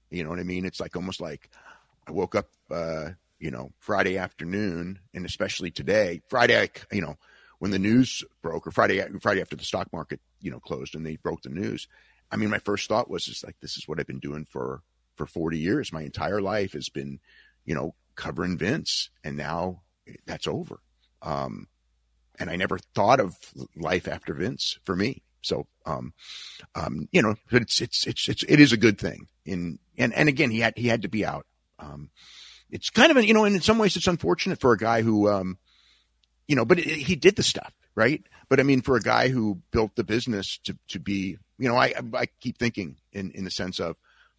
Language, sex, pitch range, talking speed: English, male, 75-110 Hz, 220 wpm